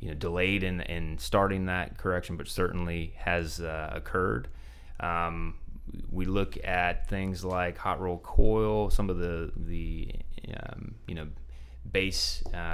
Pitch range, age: 80-95 Hz, 30-49